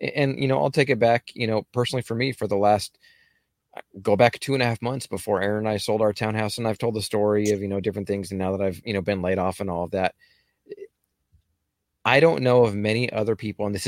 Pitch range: 100-115 Hz